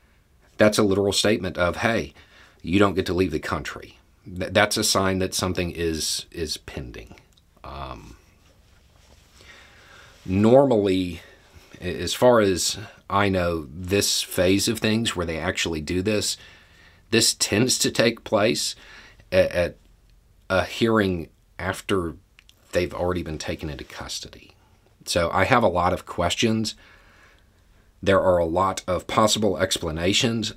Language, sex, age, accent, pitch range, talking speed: English, male, 40-59, American, 85-105 Hz, 130 wpm